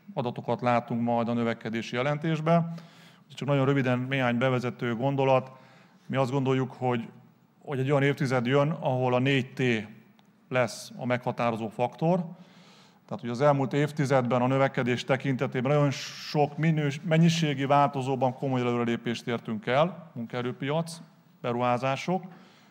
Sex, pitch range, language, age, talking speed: male, 125-160 Hz, Hungarian, 30-49, 125 wpm